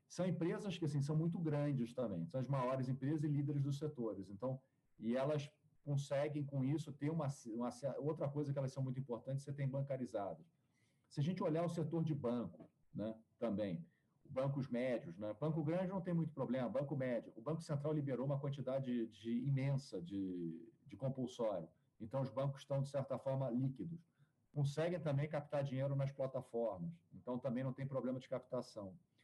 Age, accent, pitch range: 40-59, Brazilian, 120-145 Hz